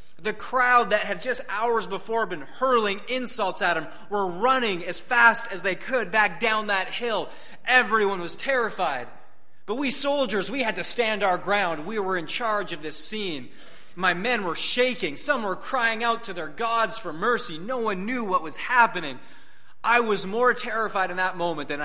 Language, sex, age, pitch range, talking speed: English, male, 30-49, 160-230 Hz, 190 wpm